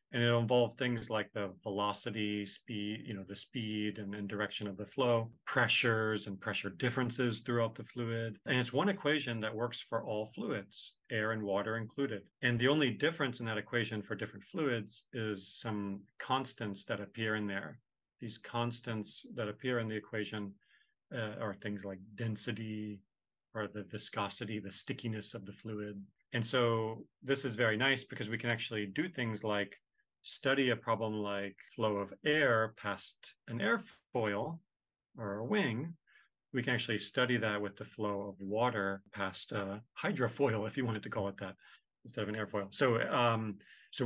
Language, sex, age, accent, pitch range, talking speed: English, male, 40-59, American, 105-125 Hz, 175 wpm